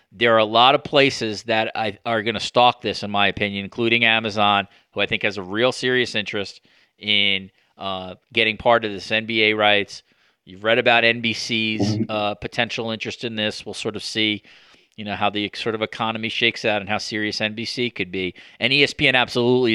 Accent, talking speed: American, 195 wpm